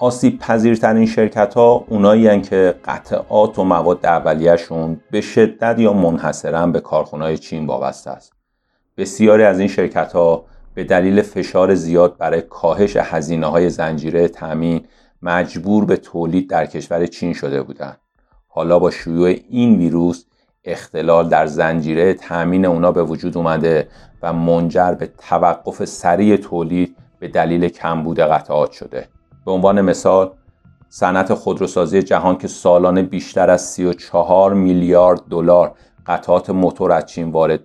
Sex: male